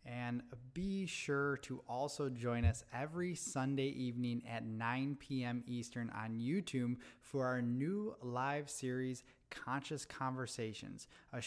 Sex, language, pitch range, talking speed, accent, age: male, English, 115-140 Hz, 125 wpm, American, 20-39